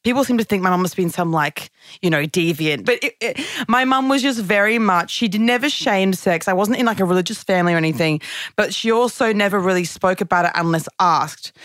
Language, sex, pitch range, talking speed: English, female, 160-205 Hz, 230 wpm